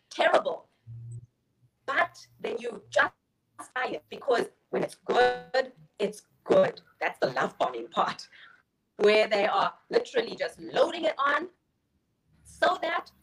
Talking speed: 125 wpm